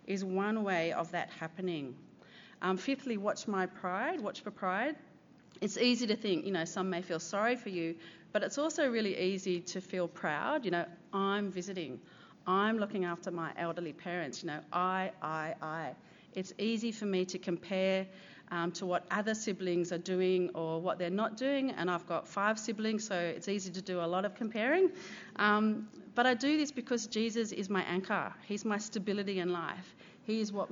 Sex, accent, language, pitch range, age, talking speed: female, Australian, English, 175-215 Hz, 40-59, 195 wpm